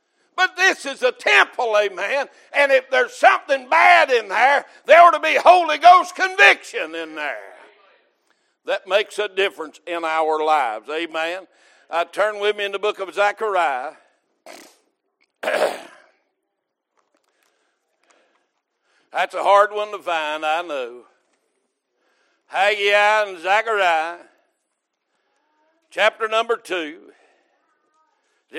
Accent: American